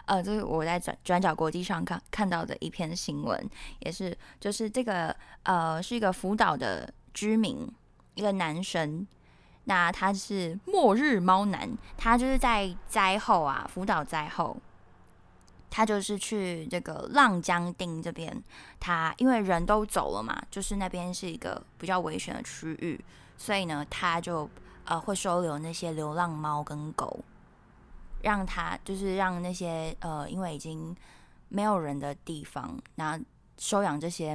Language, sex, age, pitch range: Chinese, female, 10-29, 155-205 Hz